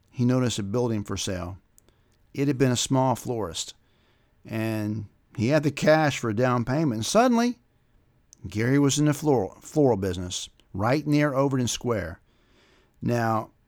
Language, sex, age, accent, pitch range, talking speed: English, male, 50-69, American, 110-135 Hz, 155 wpm